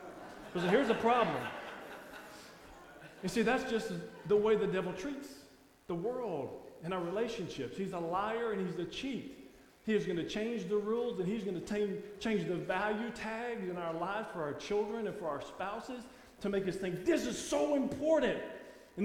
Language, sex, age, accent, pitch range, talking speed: English, male, 40-59, American, 195-255 Hz, 185 wpm